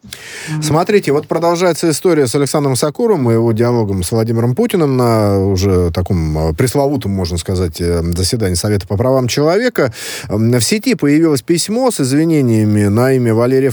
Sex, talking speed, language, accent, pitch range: male, 145 wpm, Russian, native, 105-150 Hz